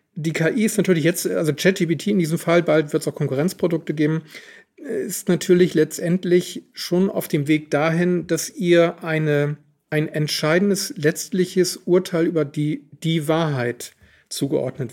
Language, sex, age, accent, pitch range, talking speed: German, male, 40-59, German, 150-175 Hz, 145 wpm